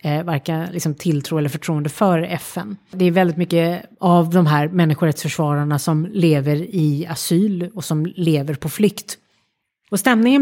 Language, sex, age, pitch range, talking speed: Swedish, female, 30-49, 160-205 Hz, 145 wpm